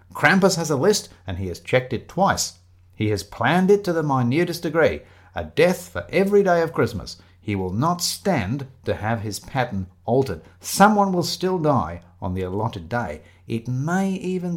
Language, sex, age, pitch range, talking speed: English, male, 50-69, 90-135 Hz, 185 wpm